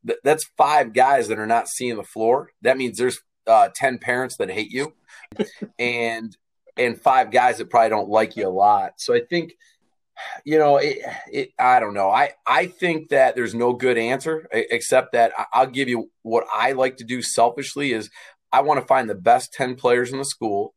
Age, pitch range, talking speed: 30-49, 115-145 Hz, 200 wpm